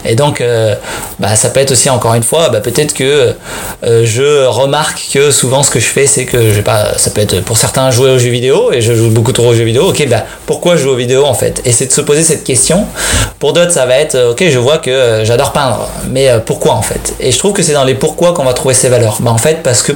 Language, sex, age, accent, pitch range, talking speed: French, male, 20-39, French, 120-145 Hz, 285 wpm